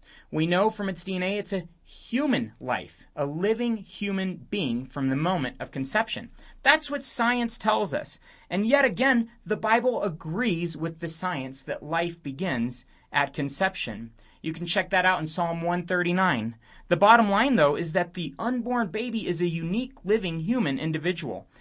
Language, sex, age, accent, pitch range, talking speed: English, male, 30-49, American, 140-200 Hz, 165 wpm